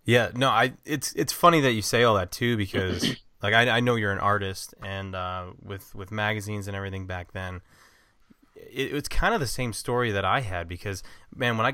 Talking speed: 225 wpm